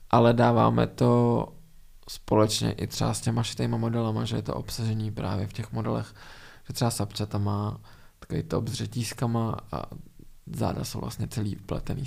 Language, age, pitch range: Czech, 20-39, 110-125 Hz